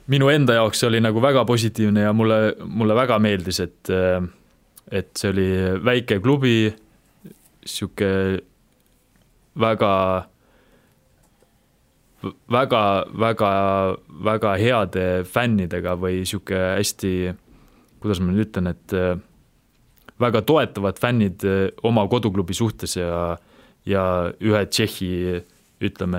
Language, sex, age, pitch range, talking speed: English, male, 20-39, 95-115 Hz, 95 wpm